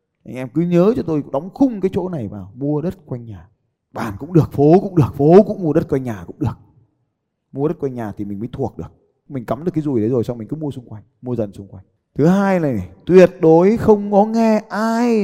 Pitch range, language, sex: 105-155 Hz, Vietnamese, male